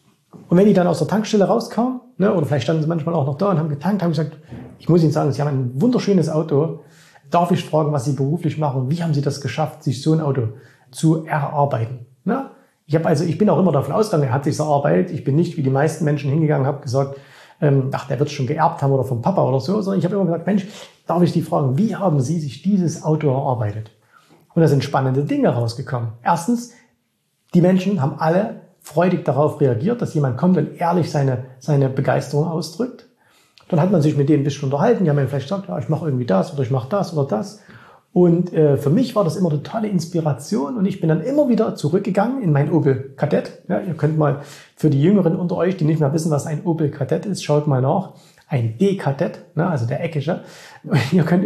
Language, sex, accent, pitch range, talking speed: German, male, German, 145-180 Hz, 235 wpm